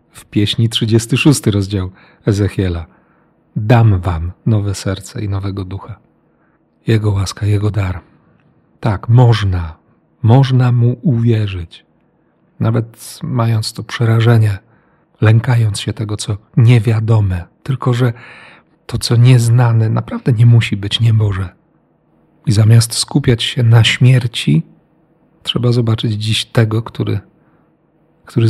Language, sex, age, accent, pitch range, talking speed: Polish, male, 40-59, native, 105-125 Hz, 110 wpm